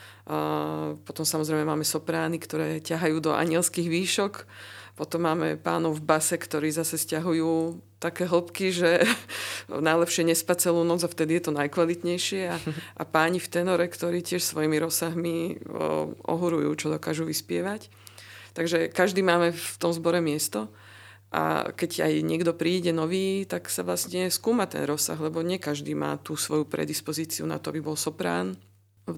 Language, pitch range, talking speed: Slovak, 105-170 Hz, 150 wpm